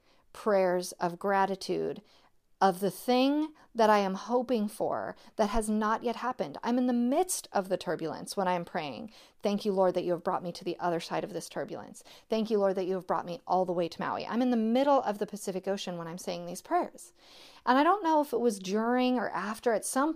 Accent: American